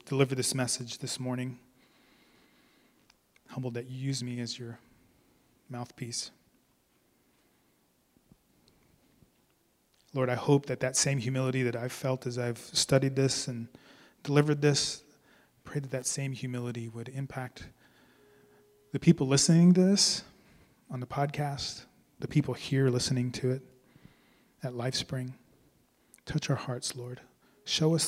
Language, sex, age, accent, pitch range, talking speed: English, male, 30-49, American, 125-145 Hz, 130 wpm